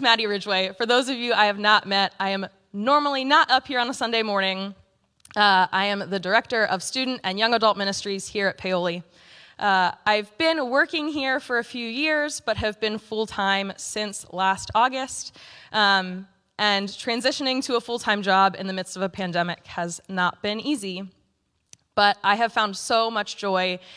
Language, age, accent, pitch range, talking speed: English, 20-39, American, 185-235 Hz, 185 wpm